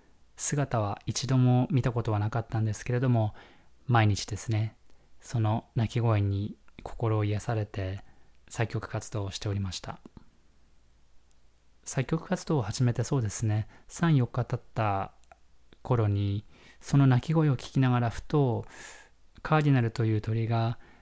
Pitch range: 105-125 Hz